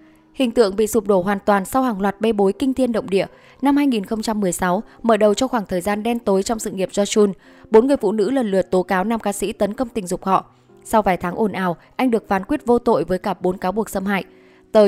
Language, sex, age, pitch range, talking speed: Vietnamese, female, 10-29, 190-230 Hz, 270 wpm